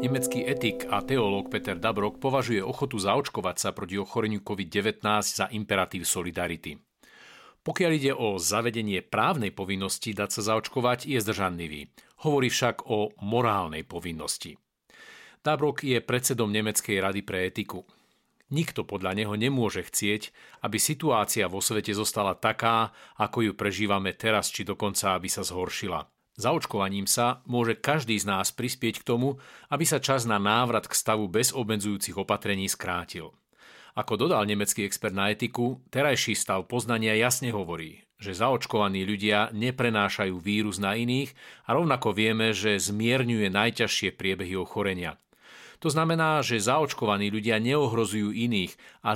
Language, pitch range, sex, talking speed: Slovak, 100-125 Hz, male, 140 wpm